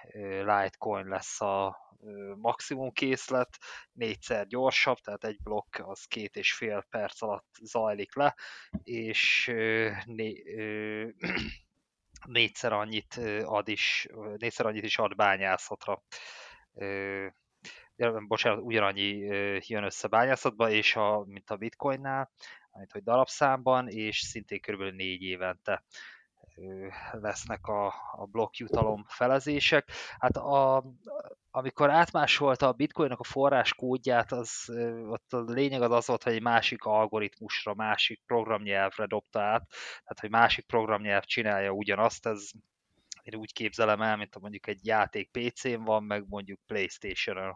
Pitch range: 100-120 Hz